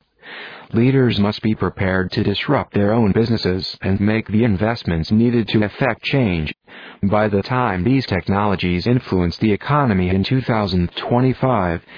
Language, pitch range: English, 95-125 Hz